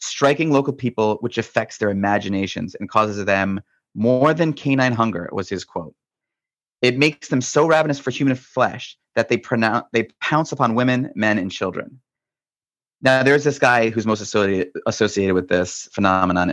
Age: 30-49